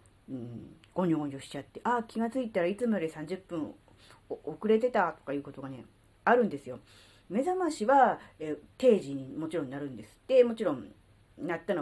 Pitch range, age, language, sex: 140-225 Hz, 40-59, Japanese, female